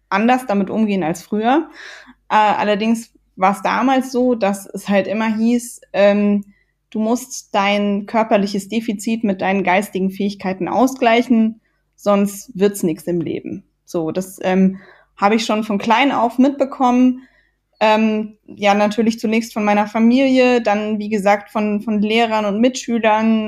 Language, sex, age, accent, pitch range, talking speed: German, female, 20-39, German, 200-250 Hz, 150 wpm